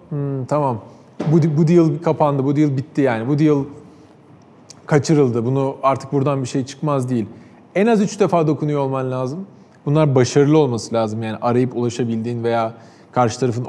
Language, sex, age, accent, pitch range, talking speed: Turkish, male, 40-59, native, 130-165 Hz, 160 wpm